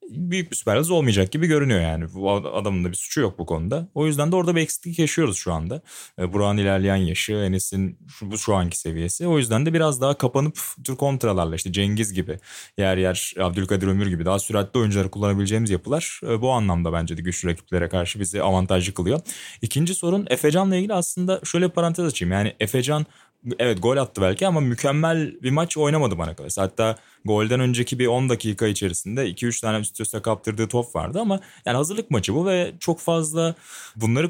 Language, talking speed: Turkish, 190 wpm